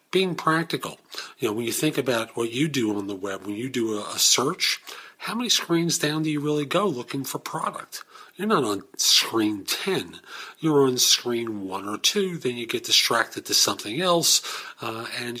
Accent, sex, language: American, male, English